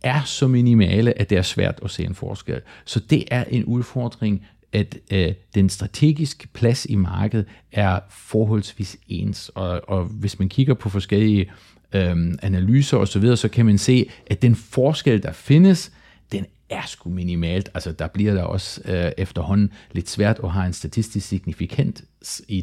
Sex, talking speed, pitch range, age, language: male, 175 wpm, 95-120 Hz, 40-59, Danish